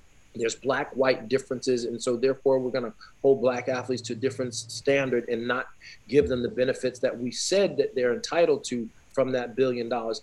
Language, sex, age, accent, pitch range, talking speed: English, male, 40-59, American, 125-165 Hz, 200 wpm